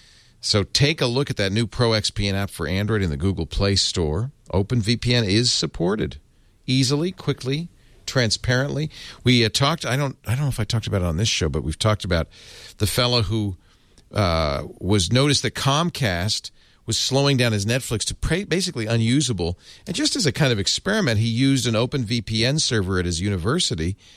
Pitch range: 105-145 Hz